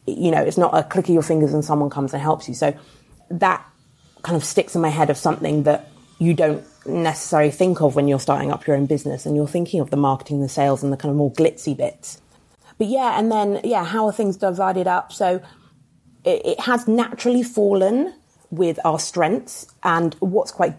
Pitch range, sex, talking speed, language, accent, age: 145-175 Hz, female, 215 wpm, English, British, 30-49